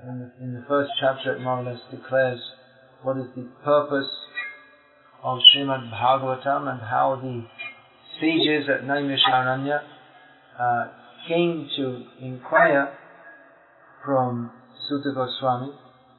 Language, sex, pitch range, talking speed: English, male, 125-145 Hz, 110 wpm